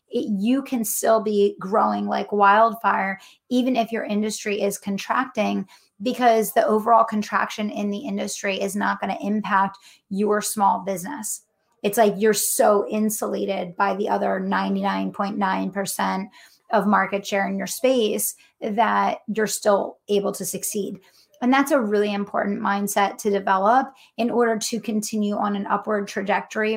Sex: female